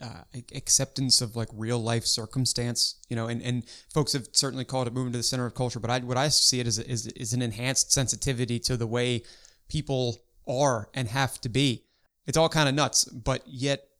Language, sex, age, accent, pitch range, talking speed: English, male, 20-39, American, 115-135 Hz, 215 wpm